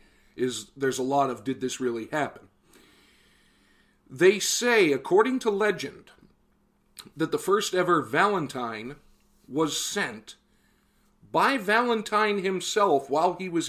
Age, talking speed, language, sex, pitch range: 50-69, 120 wpm, English, male, 125-190 Hz